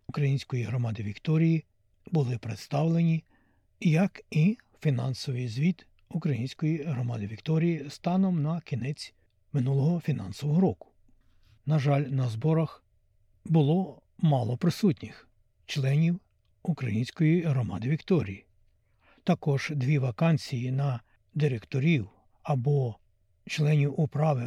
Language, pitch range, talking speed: Ukrainian, 120-160 Hz, 90 wpm